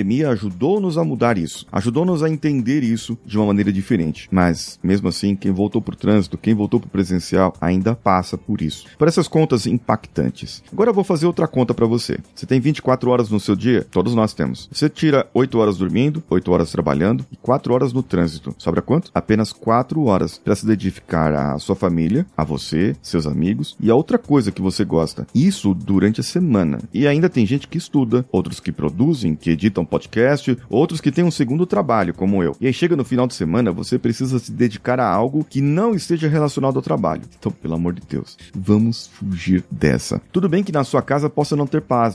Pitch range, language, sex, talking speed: 95-140 Hz, Portuguese, male, 210 wpm